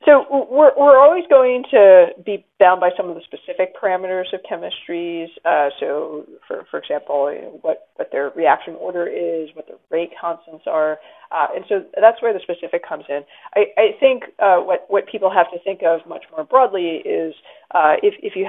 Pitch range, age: 165-245 Hz, 20-39